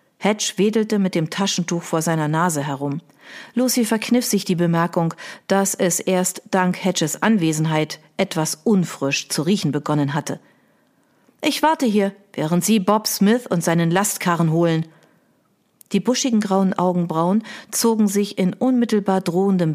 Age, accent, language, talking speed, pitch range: 50-69, German, German, 140 wpm, 175-215 Hz